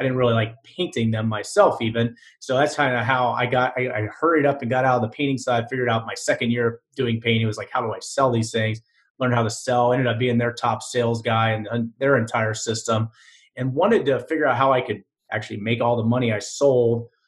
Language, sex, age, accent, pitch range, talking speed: English, male, 30-49, American, 110-130 Hz, 245 wpm